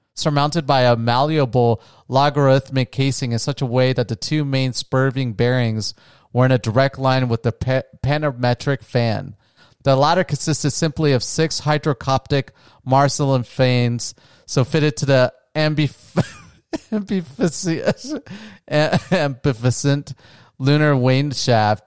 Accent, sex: American, male